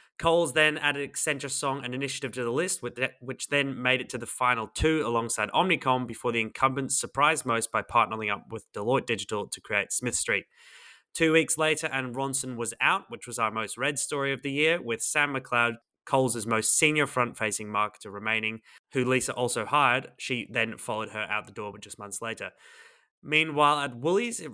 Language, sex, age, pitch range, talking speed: English, male, 20-39, 110-140 Hz, 195 wpm